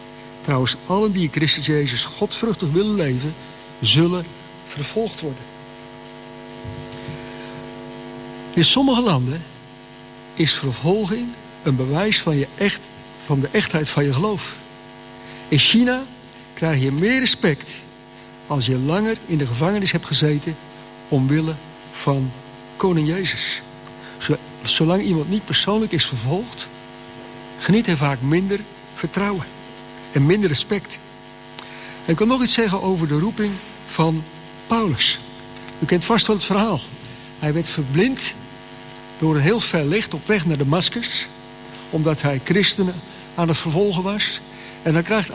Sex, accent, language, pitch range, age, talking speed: male, Dutch, Dutch, 125-195 Hz, 60-79, 130 wpm